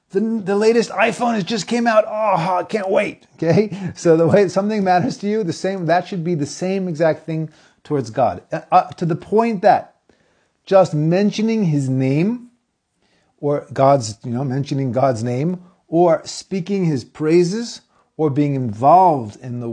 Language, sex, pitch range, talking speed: English, male, 130-180 Hz, 170 wpm